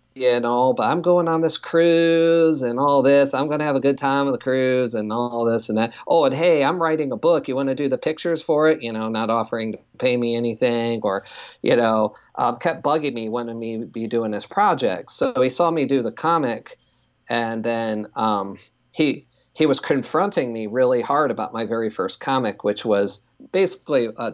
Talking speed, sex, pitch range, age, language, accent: 220 wpm, male, 115-145 Hz, 40-59, English, American